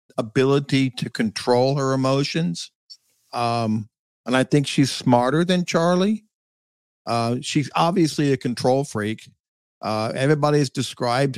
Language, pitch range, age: English, 120-145 Hz, 50-69